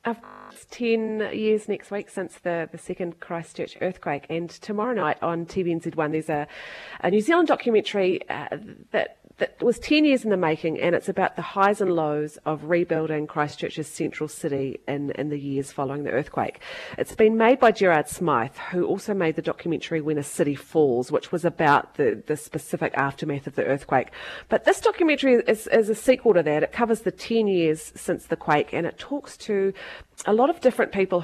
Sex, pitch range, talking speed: female, 155-210 Hz, 195 wpm